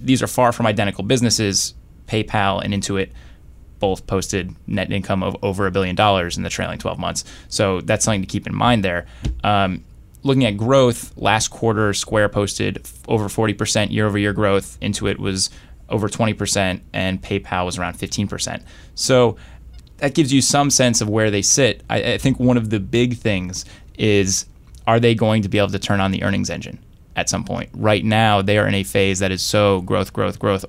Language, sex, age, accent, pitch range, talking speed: English, male, 20-39, American, 95-110 Hz, 190 wpm